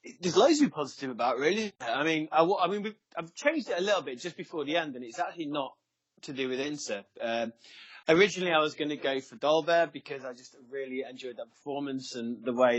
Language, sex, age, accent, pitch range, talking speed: English, male, 20-39, British, 125-155 Hz, 235 wpm